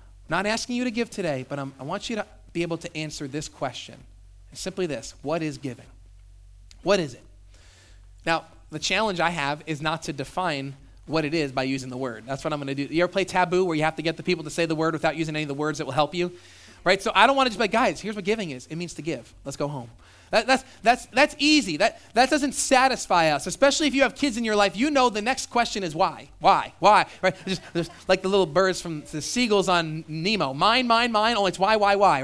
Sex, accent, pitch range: male, American, 135-205 Hz